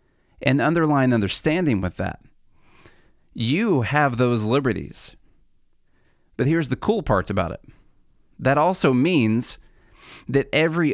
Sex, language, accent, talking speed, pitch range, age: male, English, American, 115 wpm, 110-145 Hz, 30-49